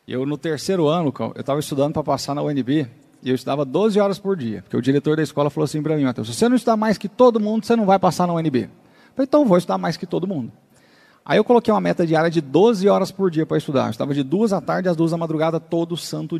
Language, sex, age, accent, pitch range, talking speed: Portuguese, male, 40-59, Brazilian, 145-195 Hz, 265 wpm